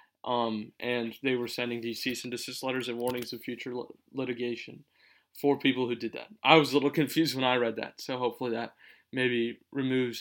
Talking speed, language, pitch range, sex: 205 wpm, English, 120-145 Hz, male